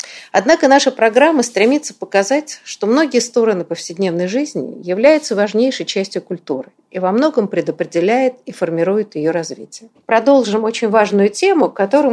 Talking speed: 135 wpm